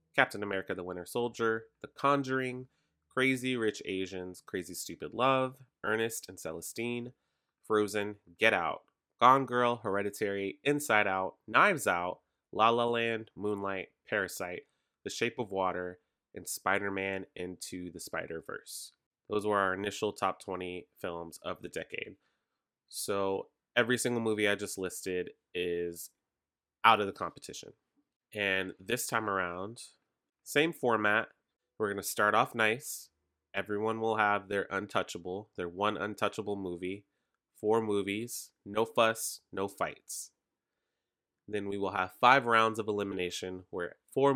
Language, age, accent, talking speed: English, 20-39, American, 135 wpm